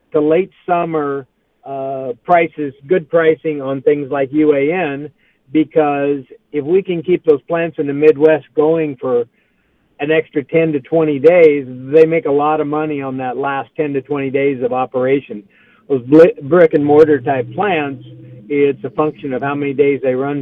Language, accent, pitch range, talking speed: English, American, 140-165 Hz, 170 wpm